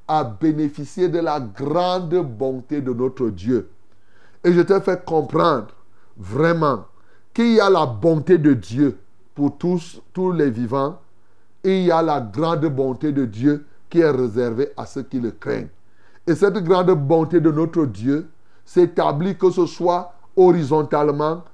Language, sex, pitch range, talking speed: French, male, 145-190 Hz, 155 wpm